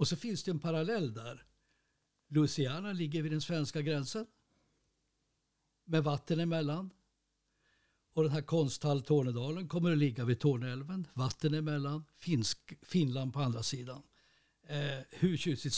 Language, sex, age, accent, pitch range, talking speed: Swedish, male, 60-79, native, 135-165 Hz, 135 wpm